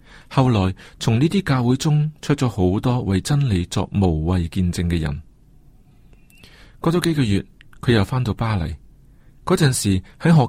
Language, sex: Chinese, male